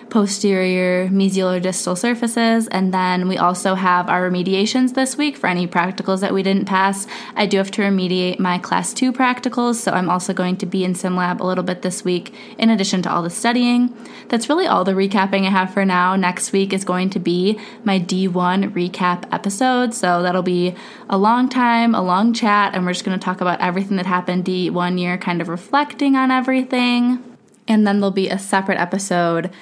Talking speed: 205 wpm